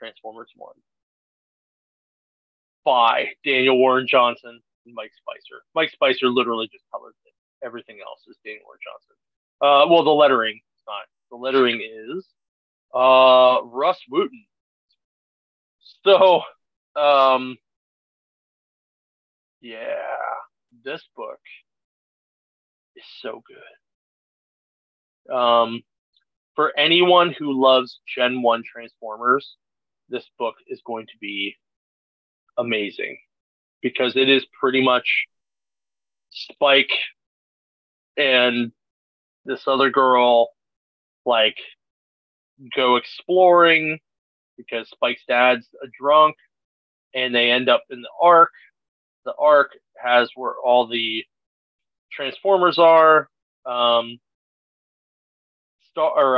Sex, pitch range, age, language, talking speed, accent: male, 115-155 Hz, 30-49, English, 95 wpm, American